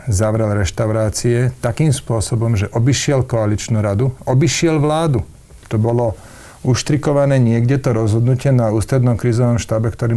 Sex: male